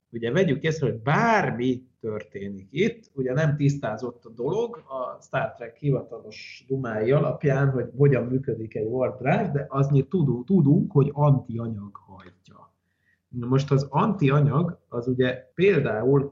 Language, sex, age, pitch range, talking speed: Hungarian, male, 30-49, 115-150 Hz, 130 wpm